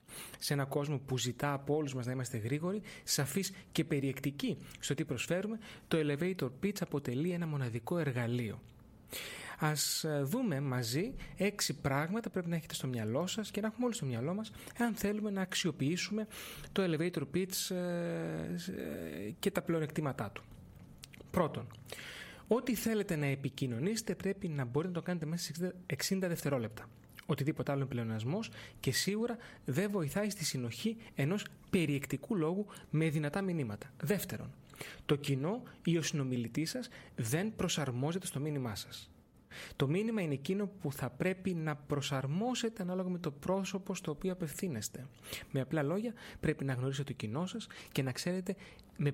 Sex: male